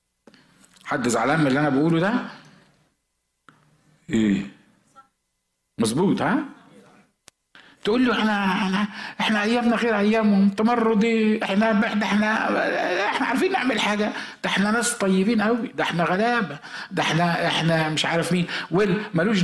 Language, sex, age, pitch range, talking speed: Arabic, male, 60-79, 145-215 Hz, 115 wpm